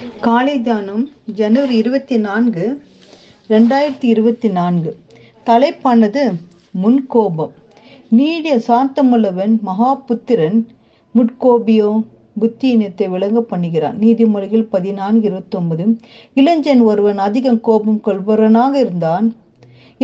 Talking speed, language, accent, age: 85 wpm, Tamil, native, 50-69